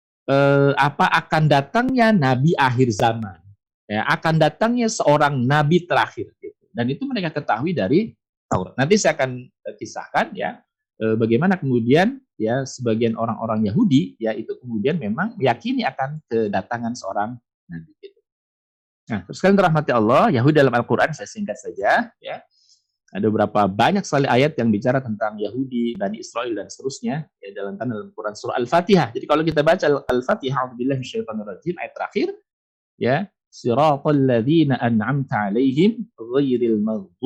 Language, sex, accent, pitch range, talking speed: Indonesian, male, native, 115-175 Hz, 135 wpm